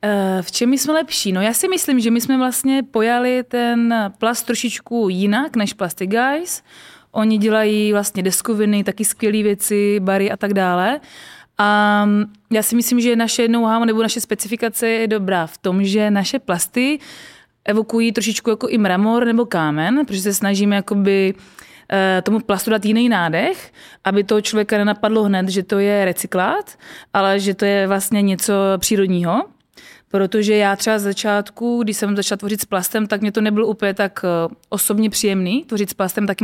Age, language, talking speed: 20-39, Czech, 165 wpm